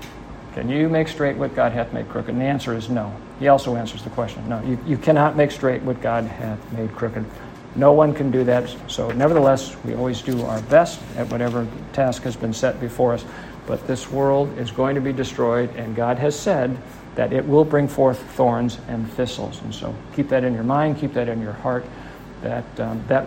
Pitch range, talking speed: 120-140 Hz, 220 wpm